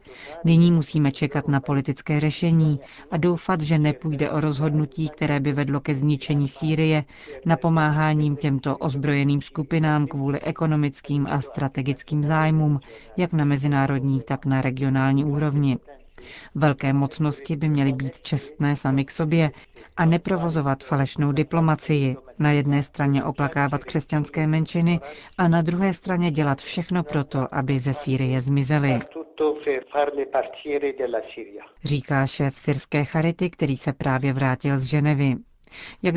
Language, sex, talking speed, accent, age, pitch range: Czech, female, 125 wpm, native, 40-59, 140-160 Hz